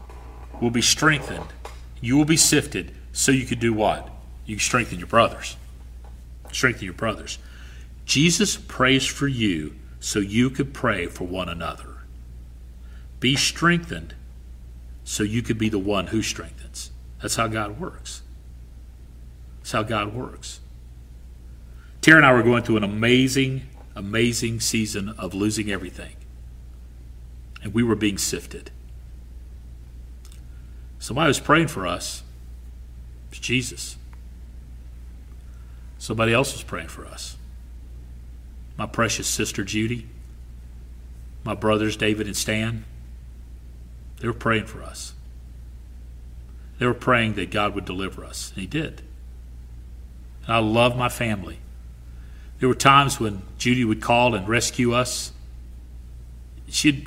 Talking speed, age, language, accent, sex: 130 wpm, 40-59, English, American, male